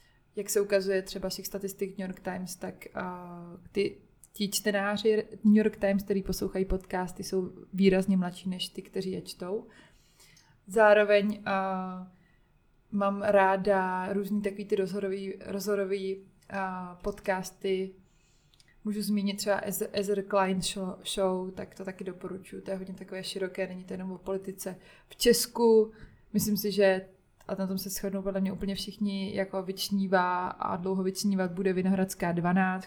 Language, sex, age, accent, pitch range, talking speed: Czech, female, 20-39, native, 185-200 Hz, 145 wpm